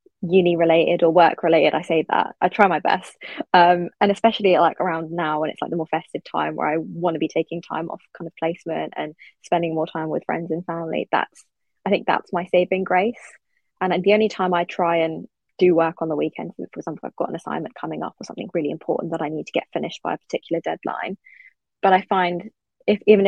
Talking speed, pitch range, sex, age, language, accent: 230 wpm, 165-190 Hz, female, 20-39, English, British